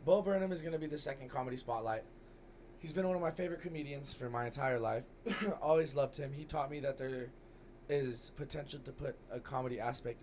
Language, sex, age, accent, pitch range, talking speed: English, male, 20-39, American, 115-145 Hz, 210 wpm